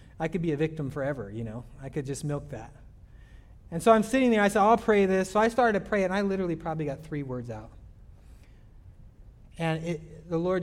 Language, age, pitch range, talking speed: English, 30-49, 115-165 Hz, 225 wpm